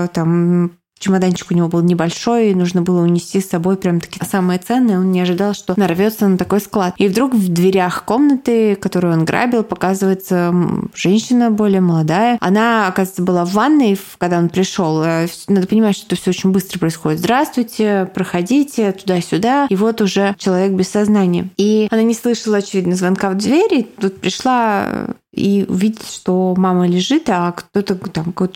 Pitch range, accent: 180-210 Hz, native